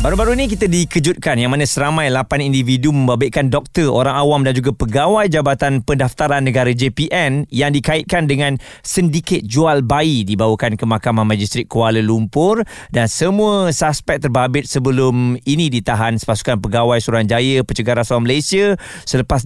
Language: Malay